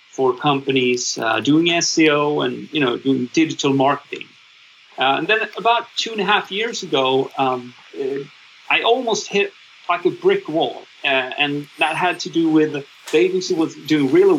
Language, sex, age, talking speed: English, male, 40-59, 170 wpm